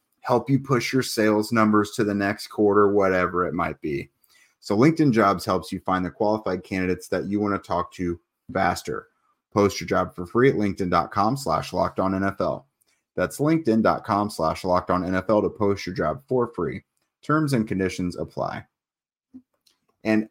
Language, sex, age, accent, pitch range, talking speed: English, male, 30-49, American, 90-105 Hz, 170 wpm